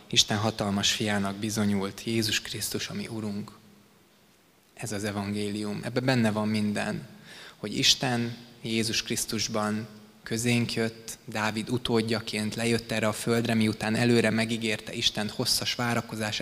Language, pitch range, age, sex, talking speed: Hungarian, 105-115 Hz, 20-39, male, 125 wpm